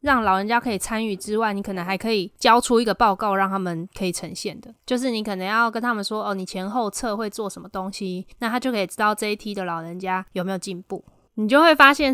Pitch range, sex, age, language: 190-230 Hz, female, 20-39, Chinese